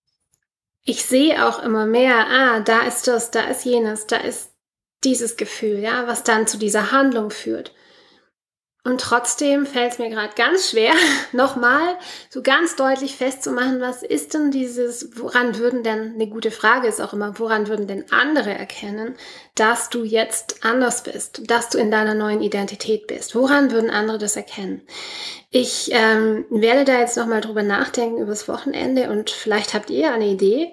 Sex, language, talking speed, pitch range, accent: female, German, 170 wpm, 220-275 Hz, German